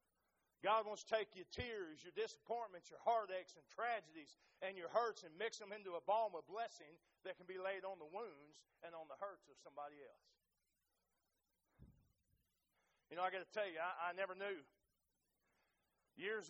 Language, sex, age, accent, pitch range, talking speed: English, male, 40-59, American, 155-205 Hz, 180 wpm